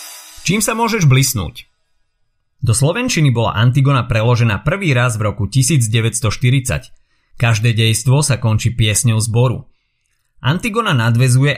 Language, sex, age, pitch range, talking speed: Slovak, male, 30-49, 110-135 Hz, 115 wpm